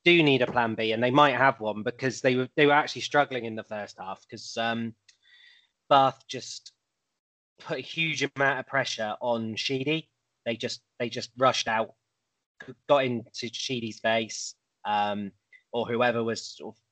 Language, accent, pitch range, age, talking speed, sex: English, British, 110-135 Hz, 20-39, 165 wpm, male